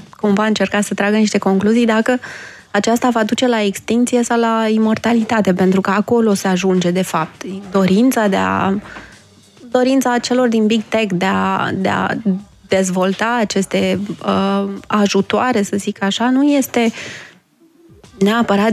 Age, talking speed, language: 20-39, 130 wpm, Romanian